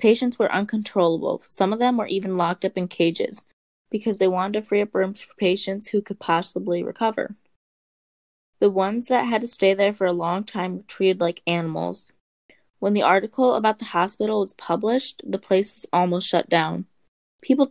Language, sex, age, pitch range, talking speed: English, female, 20-39, 180-220 Hz, 185 wpm